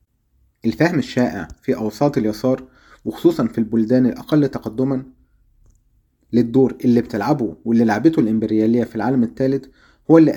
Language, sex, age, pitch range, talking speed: Arabic, male, 30-49, 110-140 Hz, 120 wpm